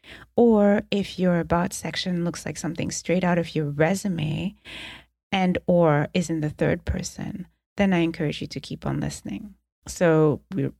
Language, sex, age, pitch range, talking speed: English, female, 30-49, 150-200 Hz, 165 wpm